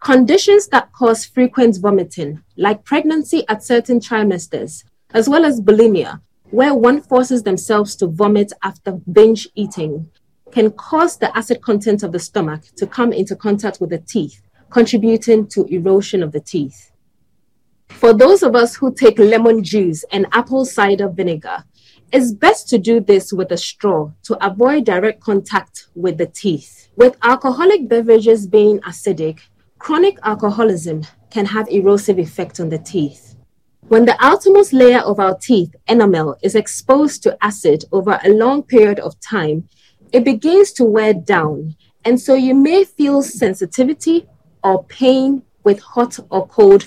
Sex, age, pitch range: female, 30-49, 190-245 Hz